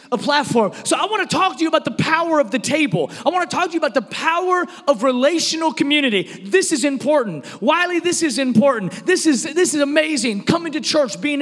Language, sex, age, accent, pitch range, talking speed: English, male, 30-49, American, 235-295 Hz, 225 wpm